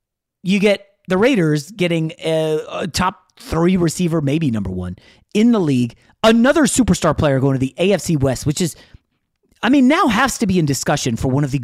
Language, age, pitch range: English, 30-49, 135-180 Hz